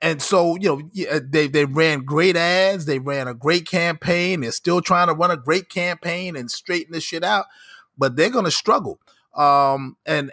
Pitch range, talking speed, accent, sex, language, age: 135-185 Hz, 190 wpm, American, male, English, 30-49